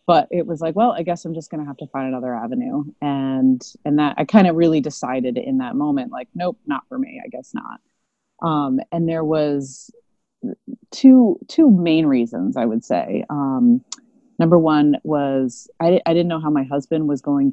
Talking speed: 200 wpm